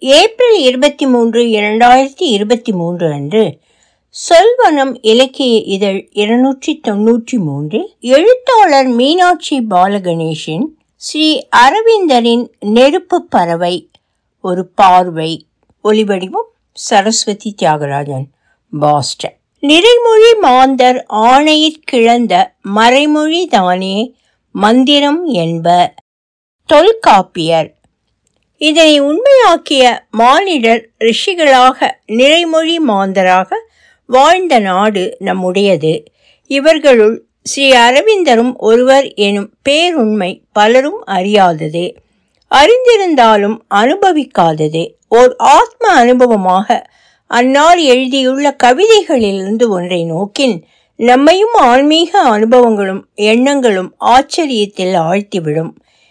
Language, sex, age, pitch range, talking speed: Tamil, female, 60-79, 200-300 Hz, 65 wpm